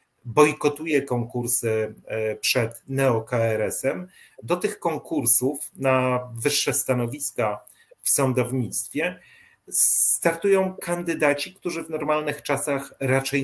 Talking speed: 90 wpm